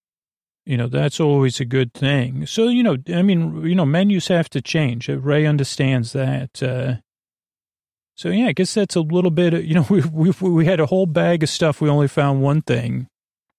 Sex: male